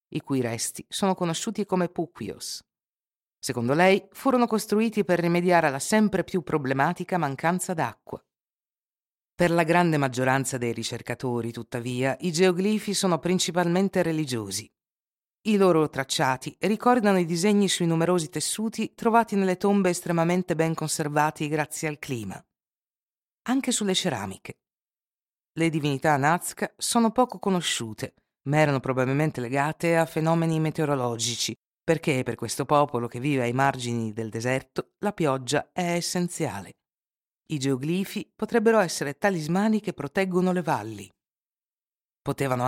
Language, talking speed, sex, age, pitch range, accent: Italian, 125 wpm, female, 50-69, 135-185 Hz, native